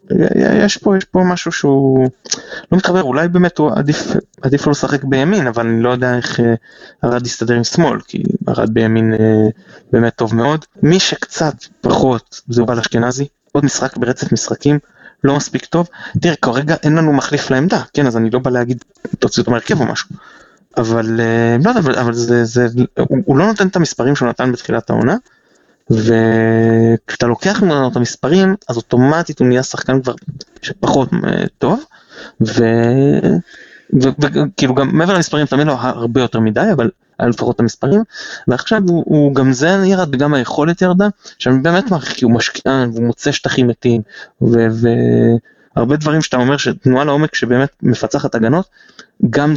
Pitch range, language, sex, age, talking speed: 120-155 Hz, Hebrew, male, 20-39, 165 wpm